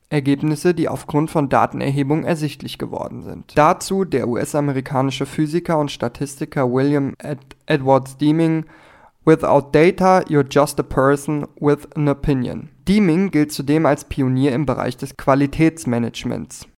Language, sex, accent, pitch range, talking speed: German, male, German, 135-160 Hz, 130 wpm